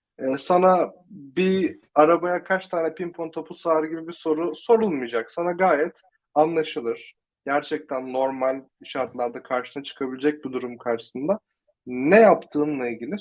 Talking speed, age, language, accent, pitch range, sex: 120 wpm, 30-49, Turkish, native, 135-180 Hz, male